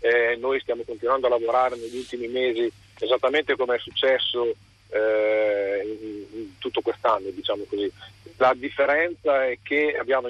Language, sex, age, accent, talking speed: Italian, male, 40-59, native, 145 wpm